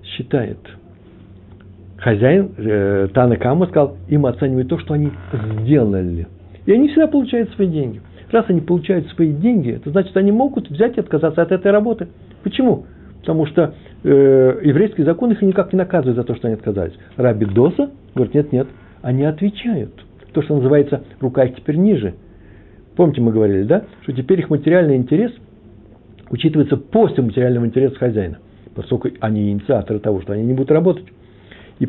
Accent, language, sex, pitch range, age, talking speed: native, Russian, male, 105-145 Hz, 60-79, 160 wpm